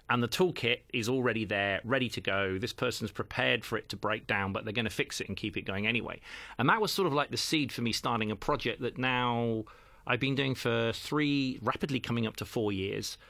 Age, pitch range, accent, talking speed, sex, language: 40-59, 105-130 Hz, British, 240 wpm, male, English